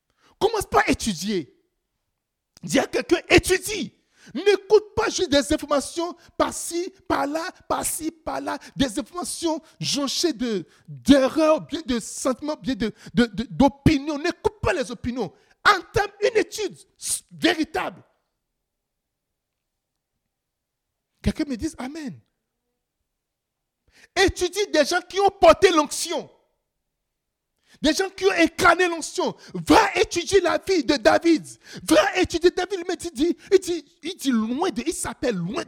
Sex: male